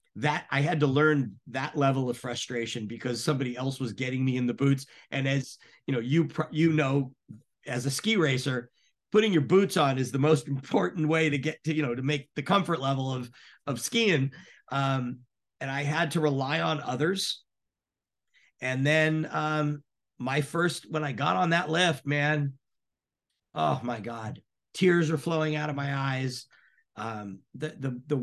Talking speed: 180 wpm